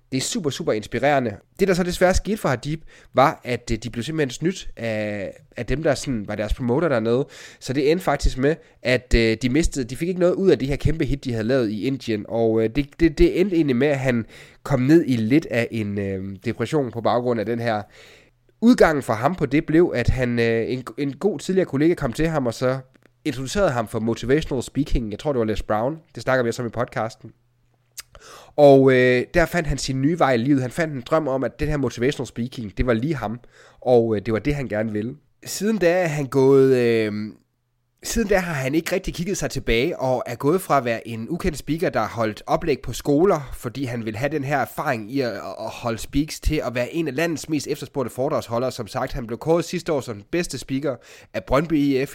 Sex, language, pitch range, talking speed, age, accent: male, Danish, 120-150 Hz, 230 wpm, 30-49, native